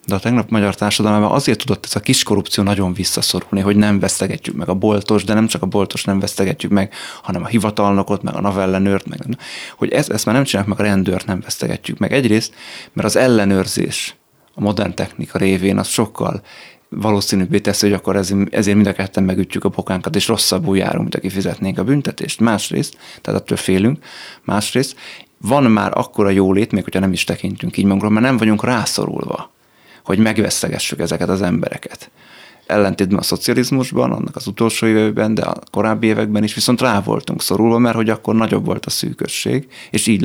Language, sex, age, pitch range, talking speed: Hungarian, male, 30-49, 100-110 Hz, 190 wpm